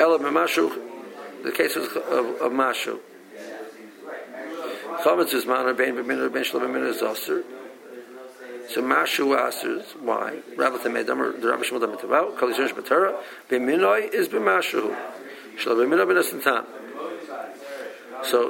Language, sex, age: English, male, 50-69